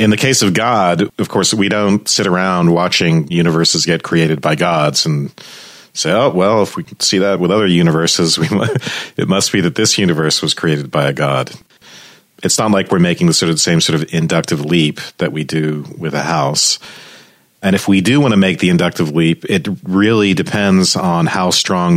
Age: 40-59